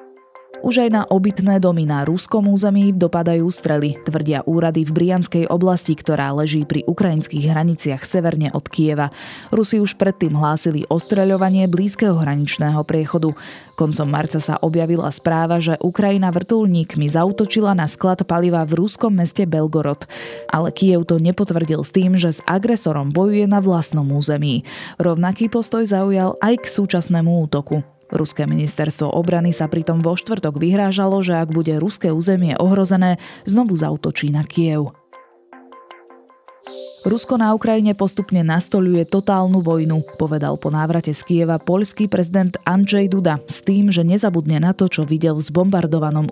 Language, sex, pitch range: Slovak, female, 155-195 Hz